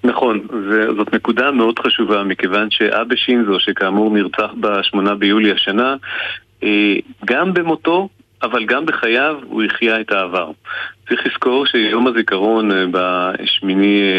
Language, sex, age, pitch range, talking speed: Hebrew, male, 40-59, 100-125 Hz, 115 wpm